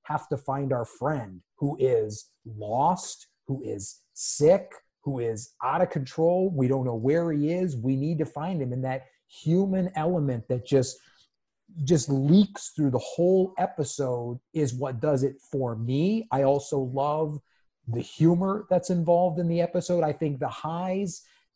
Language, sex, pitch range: English, male, 130-165 Hz